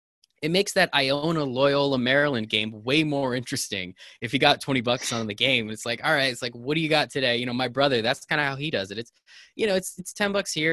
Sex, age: male, 20-39